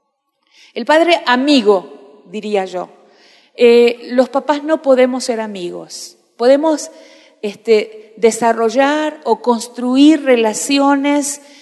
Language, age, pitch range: Spanish, 40-59, 215-260 Hz